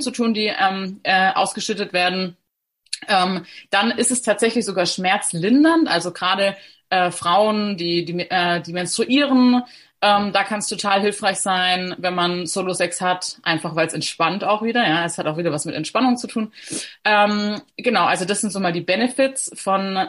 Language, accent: German, German